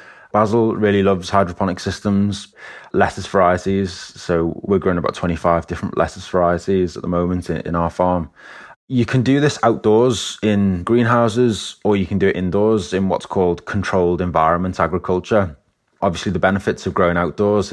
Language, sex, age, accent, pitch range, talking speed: English, male, 20-39, British, 85-95 Hz, 160 wpm